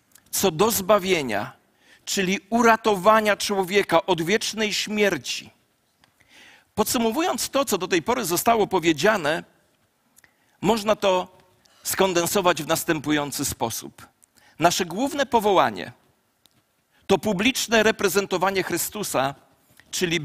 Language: Polish